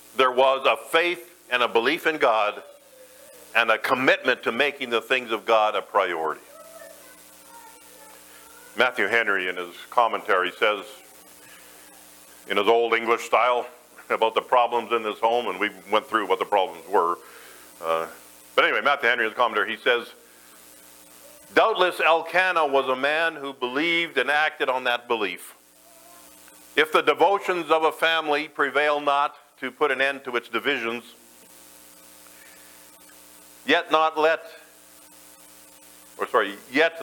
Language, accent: English, American